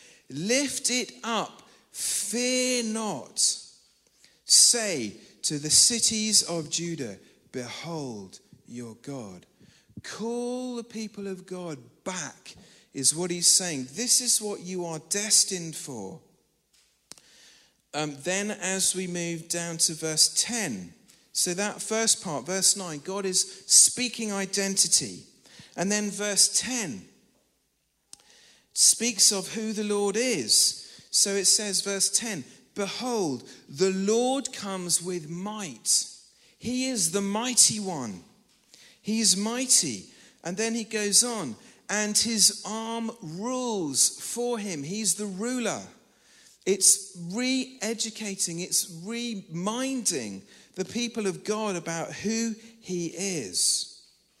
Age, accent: 40-59, British